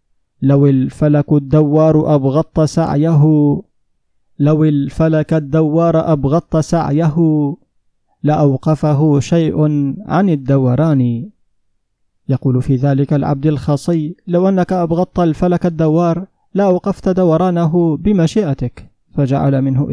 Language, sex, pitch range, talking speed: Arabic, male, 140-170 Hz, 95 wpm